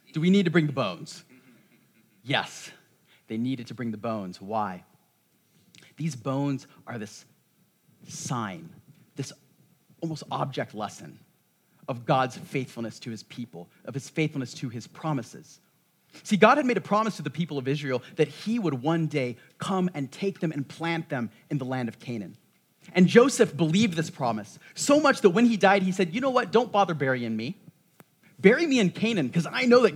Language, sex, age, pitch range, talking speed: English, male, 30-49, 130-180 Hz, 185 wpm